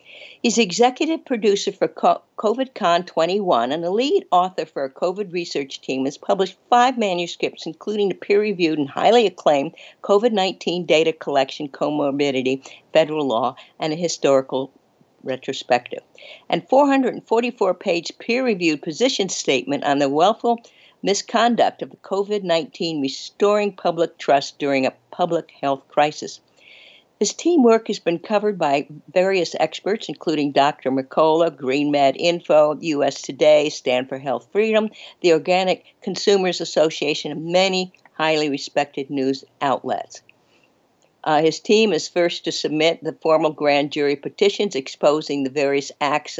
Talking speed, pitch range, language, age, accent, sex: 130 wpm, 145-205 Hz, English, 60-79, American, female